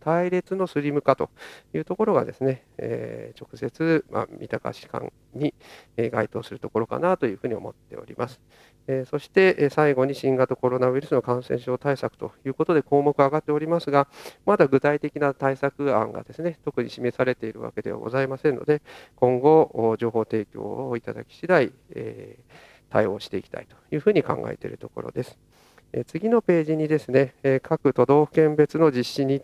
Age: 40-59